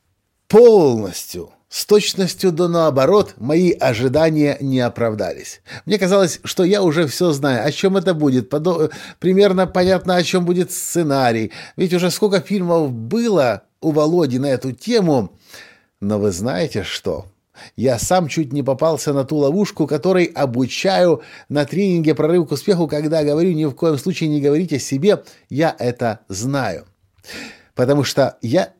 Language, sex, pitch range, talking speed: Russian, male, 120-175 Hz, 150 wpm